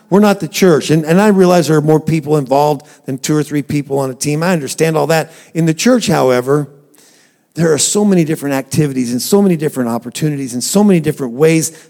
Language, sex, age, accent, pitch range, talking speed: English, male, 50-69, American, 130-160 Hz, 225 wpm